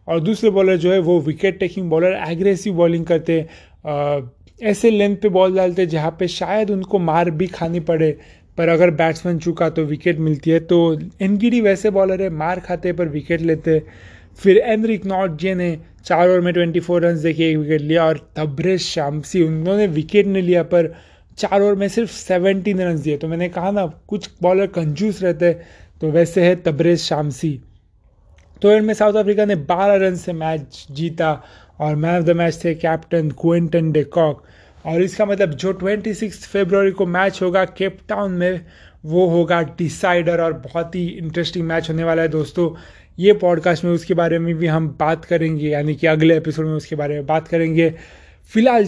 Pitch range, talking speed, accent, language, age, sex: 160-190 Hz, 185 wpm, native, Hindi, 20-39, male